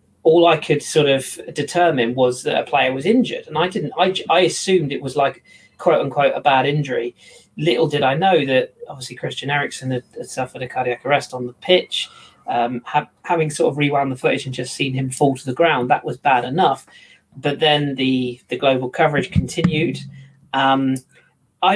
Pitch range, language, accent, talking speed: 125-150 Hz, English, British, 195 wpm